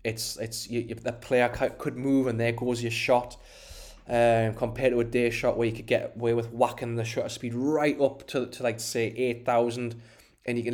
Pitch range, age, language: 115-135 Hz, 20-39, English